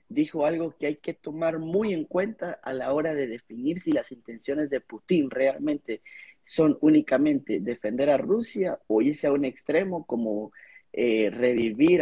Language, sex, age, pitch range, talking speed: Spanish, male, 30-49, 125-165 Hz, 165 wpm